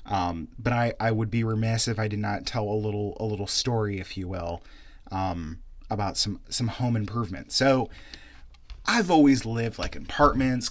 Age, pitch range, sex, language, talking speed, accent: 30-49, 100-125 Hz, male, English, 180 wpm, American